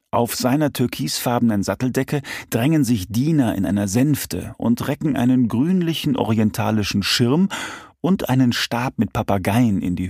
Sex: male